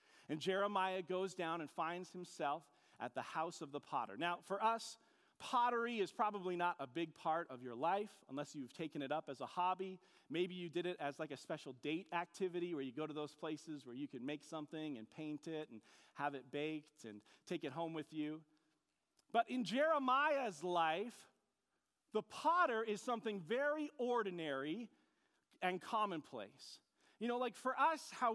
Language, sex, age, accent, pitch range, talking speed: English, male, 40-59, American, 155-205 Hz, 180 wpm